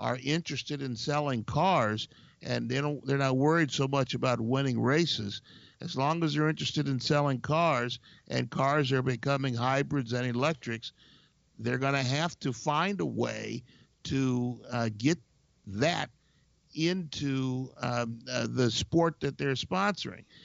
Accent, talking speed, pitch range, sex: American, 150 wpm, 120-150 Hz, male